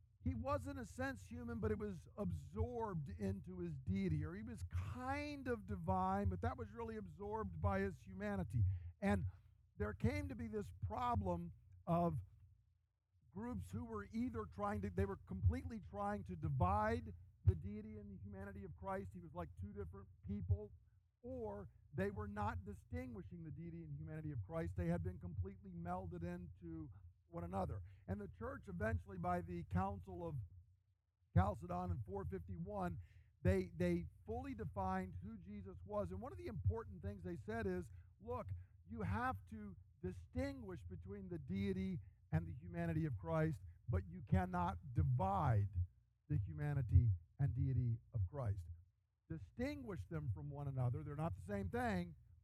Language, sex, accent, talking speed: English, male, American, 160 wpm